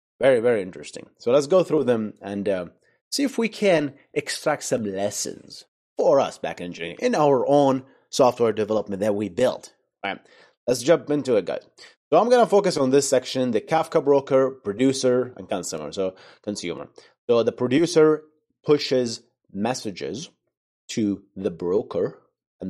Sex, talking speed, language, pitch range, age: male, 160 wpm, English, 95-140 Hz, 30-49